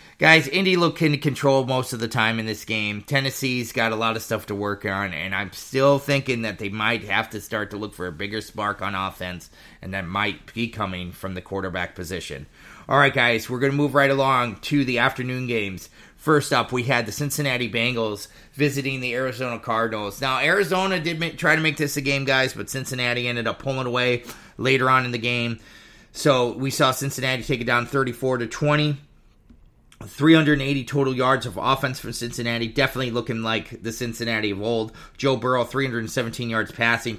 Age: 30-49